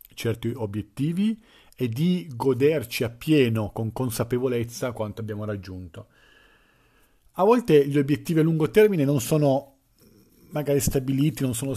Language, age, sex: Italian, 40-59, male